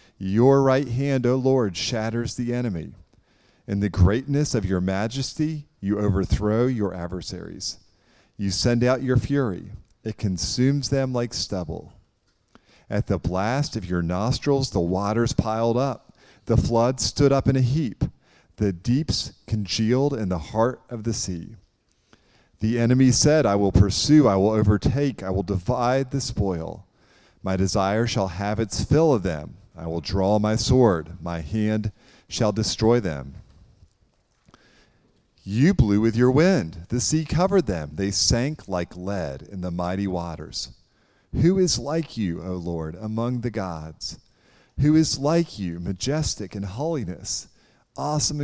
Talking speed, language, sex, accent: 150 wpm, English, male, American